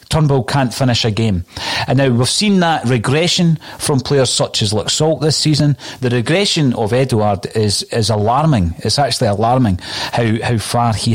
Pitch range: 110-135 Hz